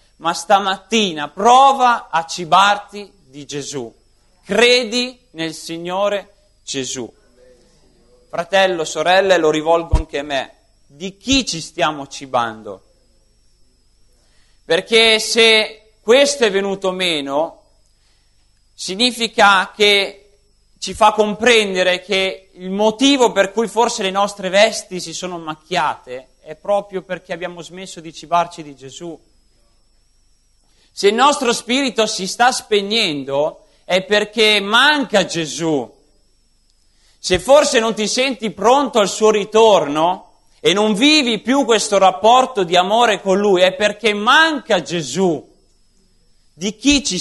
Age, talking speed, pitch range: 30-49, 115 wpm, 160-220 Hz